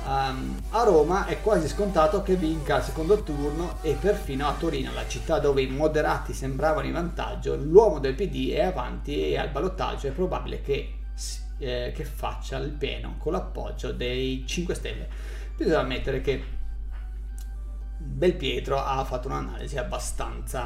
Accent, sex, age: native, male, 30-49